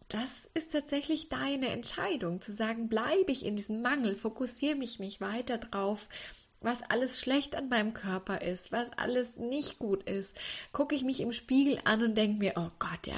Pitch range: 210-270 Hz